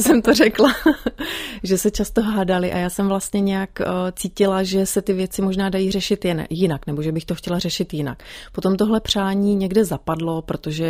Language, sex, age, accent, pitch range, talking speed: Czech, female, 30-49, native, 155-185 Hz, 195 wpm